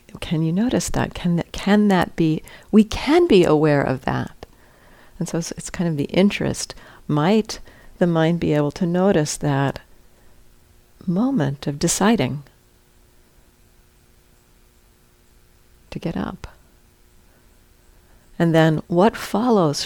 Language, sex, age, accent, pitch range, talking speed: English, female, 60-79, American, 140-180 Hz, 120 wpm